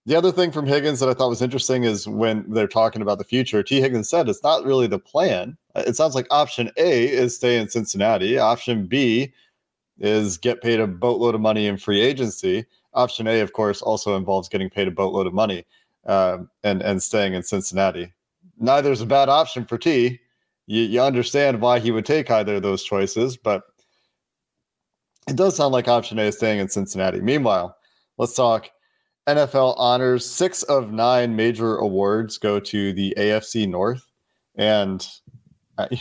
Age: 30-49